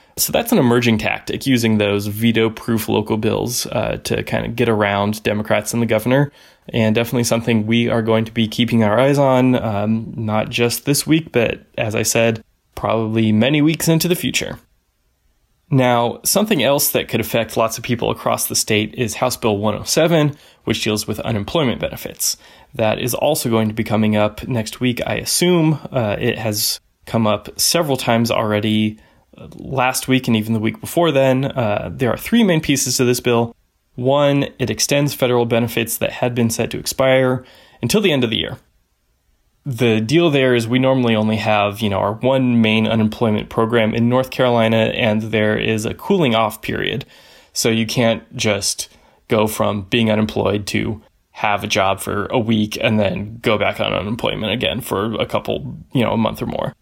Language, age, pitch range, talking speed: English, 20-39, 110-130 Hz, 190 wpm